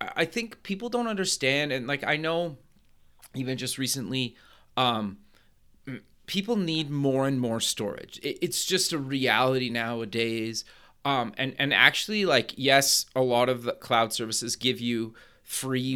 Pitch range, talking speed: 120-145 Hz, 145 wpm